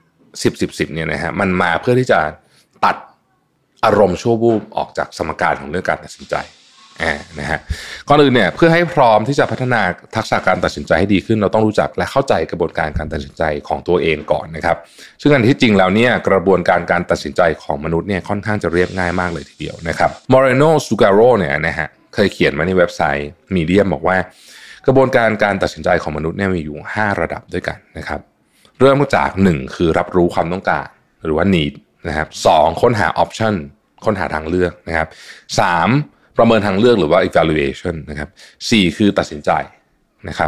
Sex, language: male, Thai